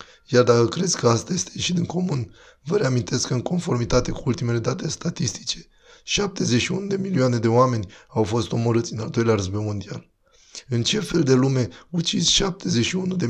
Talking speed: 175 wpm